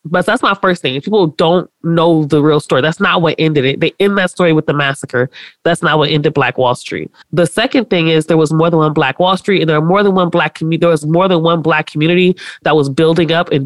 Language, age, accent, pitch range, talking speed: English, 30-49, American, 150-175 Hz, 270 wpm